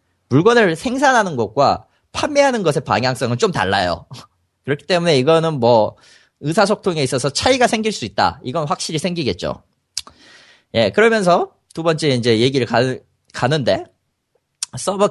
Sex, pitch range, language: male, 120-190 Hz, Korean